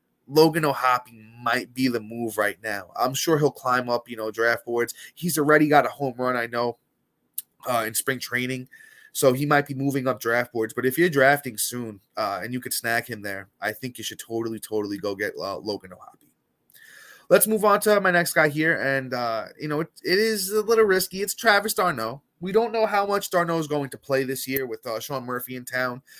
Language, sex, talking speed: English, male, 225 wpm